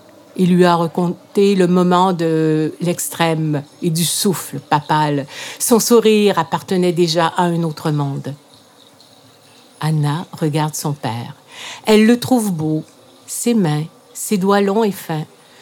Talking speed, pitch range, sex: 135 wpm, 155-205 Hz, female